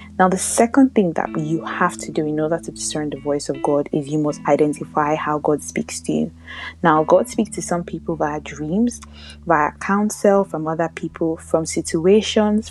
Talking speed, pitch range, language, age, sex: 195 wpm, 150-190 Hz, English, 20-39, female